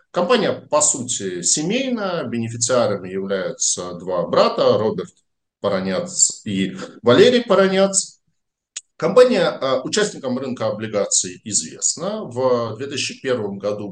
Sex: male